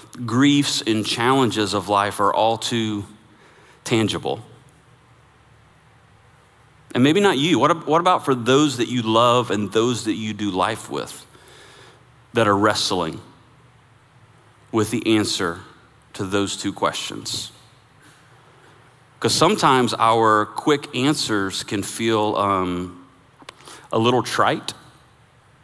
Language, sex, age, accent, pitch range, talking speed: English, male, 30-49, American, 100-120 Hz, 110 wpm